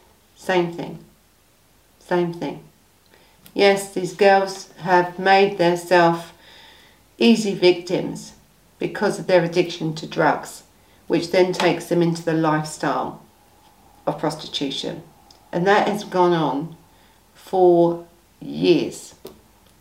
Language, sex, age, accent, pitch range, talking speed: English, female, 50-69, British, 165-195 Hz, 105 wpm